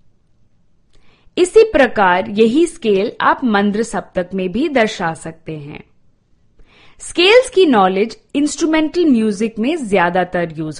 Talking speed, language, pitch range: 110 wpm, Gujarati, 185-290 Hz